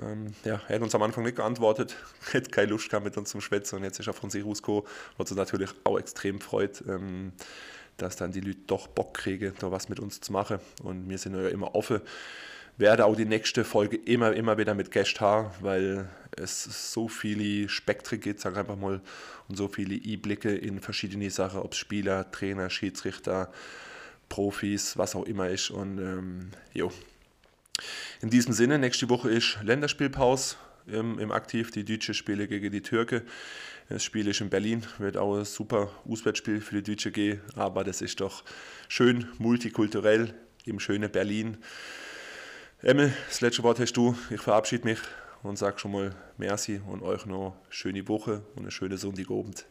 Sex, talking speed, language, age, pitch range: male, 175 wpm, German, 20-39, 100-110 Hz